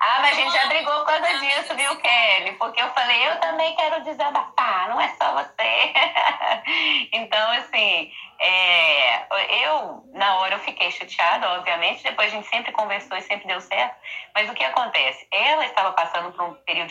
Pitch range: 185-275 Hz